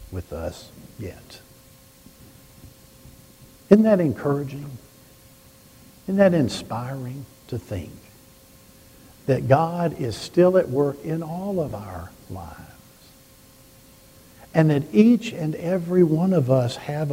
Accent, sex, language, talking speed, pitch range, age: American, male, English, 110 wpm, 110-160 Hz, 60-79